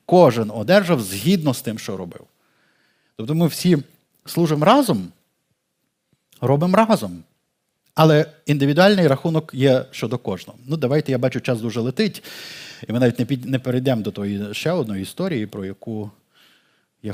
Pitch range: 115-160 Hz